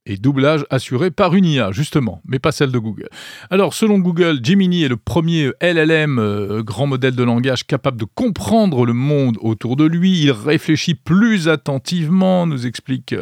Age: 40-59